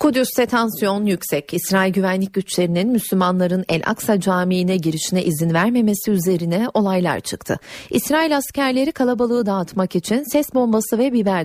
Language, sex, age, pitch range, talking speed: Turkish, female, 40-59, 175-230 Hz, 130 wpm